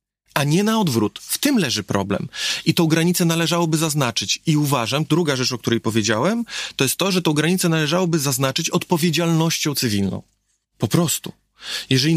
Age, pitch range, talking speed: 30-49, 120-170 Hz, 165 wpm